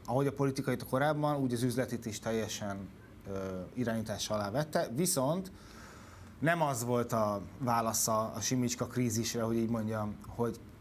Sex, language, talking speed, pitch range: male, Hungarian, 145 wpm, 110-135 Hz